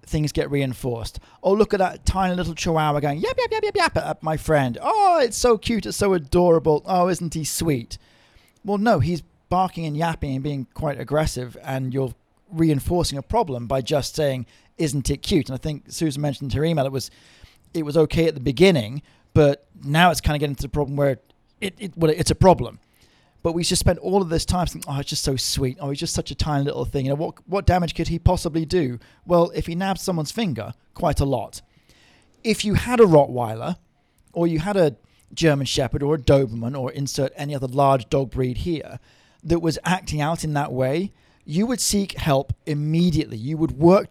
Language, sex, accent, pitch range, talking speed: English, male, British, 135-175 Hz, 215 wpm